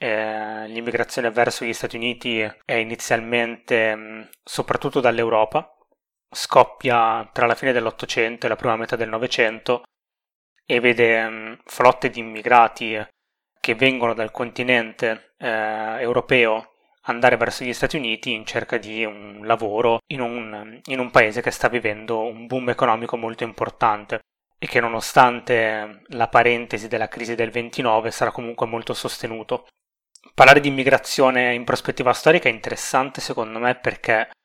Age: 20-39